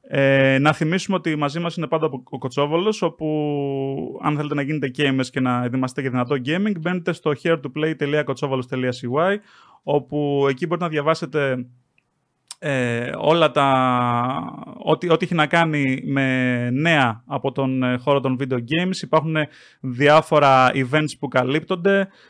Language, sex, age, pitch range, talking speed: Greek, male, 30-49, 135-165 Hz, 140 wpm